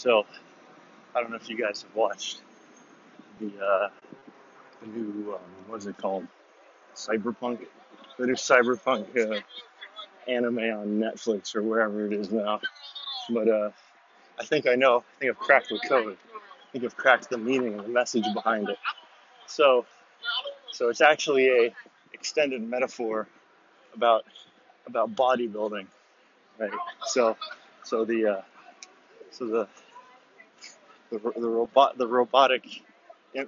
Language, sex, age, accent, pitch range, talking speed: English, male, 30-49, American, 110-130 Hz, 140 wpm